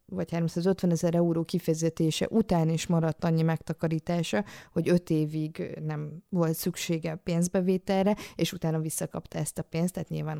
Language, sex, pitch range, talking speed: Hungarian, female, 155-175 Hz, 145 wpm